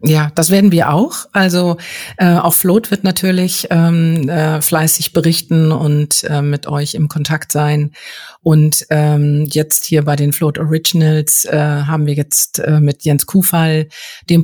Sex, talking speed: female, 160 wpm